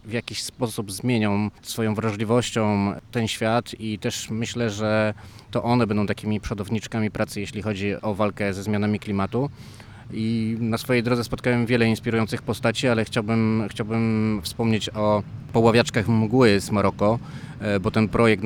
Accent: native